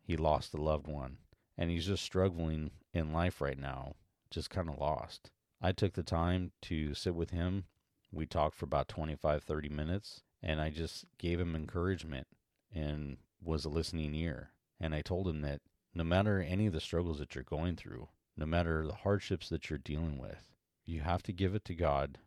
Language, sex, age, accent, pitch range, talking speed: English, male, 40-59, American, 75-90 Hz, 195 wpm